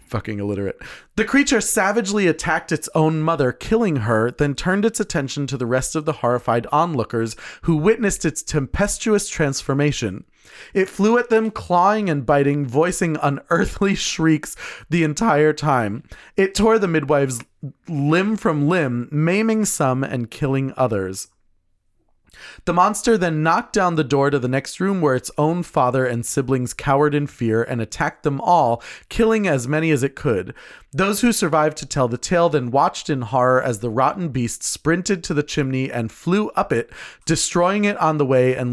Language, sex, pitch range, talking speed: English, male, 125-175 Hz, 170 wpm